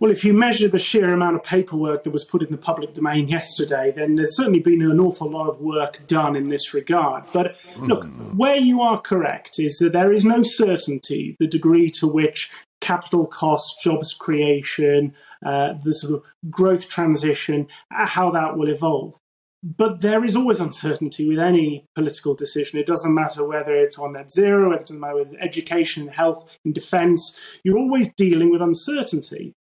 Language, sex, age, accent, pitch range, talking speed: English, male, 30-49, British, 150-195 Hz, 185 wpm